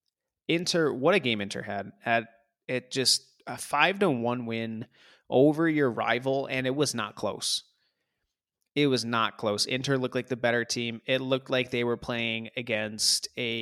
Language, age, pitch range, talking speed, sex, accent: English, 20-39, 110-130 Hz, 175 wpm, male, American